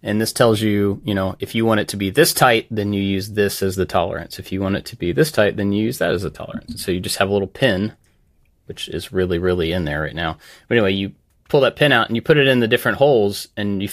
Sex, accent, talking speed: male, American, 295 wpm